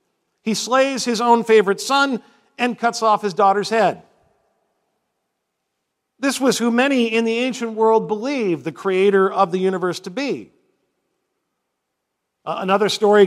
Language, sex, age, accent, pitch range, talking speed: English, male, 50-69, American, 185-230 Hz, 135 wpm